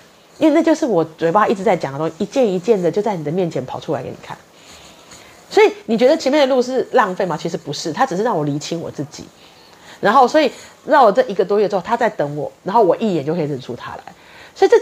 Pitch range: 175-295 Hz